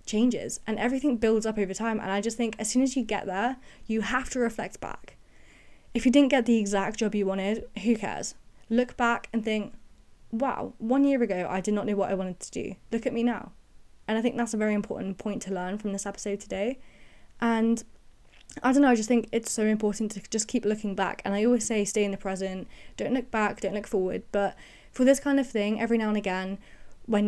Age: 20-39